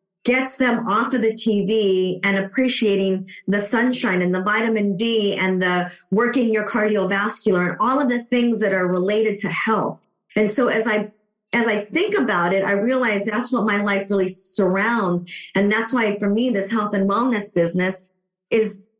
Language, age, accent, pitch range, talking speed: English, 40-59, American, 195-235 Hz, 180 wpm